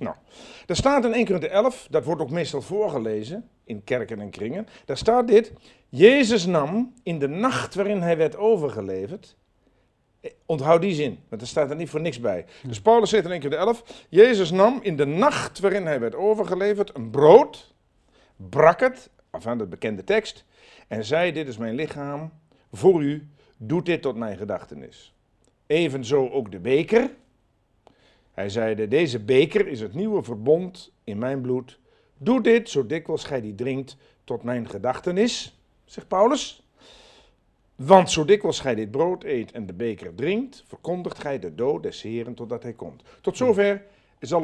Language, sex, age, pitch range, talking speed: Dutch, male, 50-69, 130-210 Hz, 175 wpm